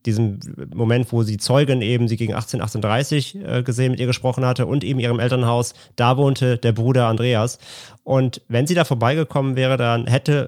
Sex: male